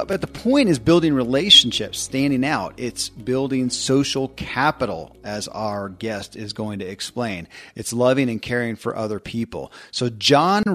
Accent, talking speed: American, 155 wpm